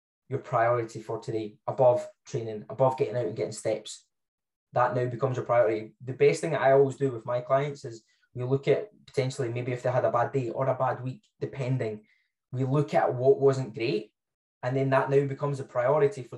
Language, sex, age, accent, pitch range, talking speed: English, male, 10-29, British, 110-135 Hz, 210 wpm